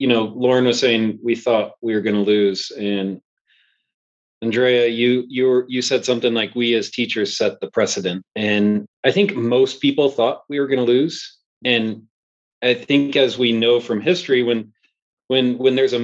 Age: 30-49